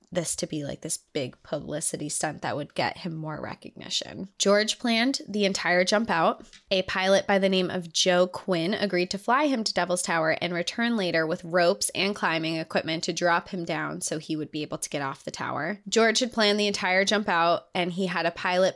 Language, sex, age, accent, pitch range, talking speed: English, female, 20-39, American, 170-205 Hz, 220 wpm